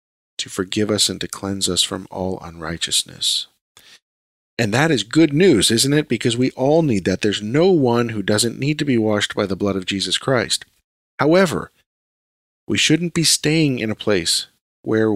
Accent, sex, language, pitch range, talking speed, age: American, male, English, 100-145 Hz, 180 wpm, 40-59